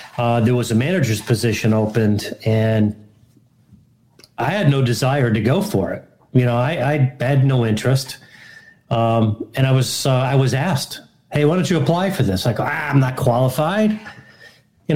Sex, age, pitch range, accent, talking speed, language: male, 40-59, 115-135 Hz, American, 180 wpm, English